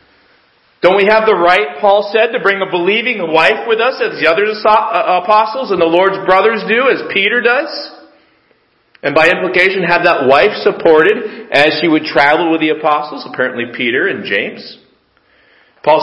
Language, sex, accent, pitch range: English, male, American, 155-225 Hz